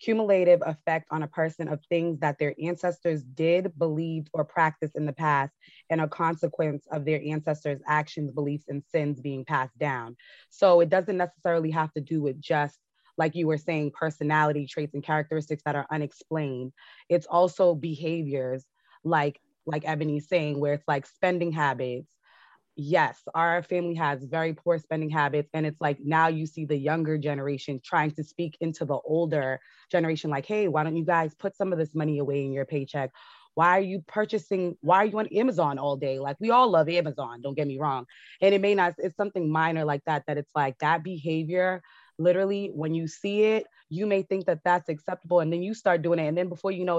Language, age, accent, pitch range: English, 20-39, American, 150-175 Hz